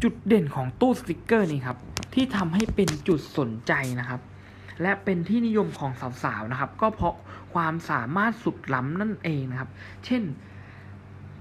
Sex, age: male, 20-39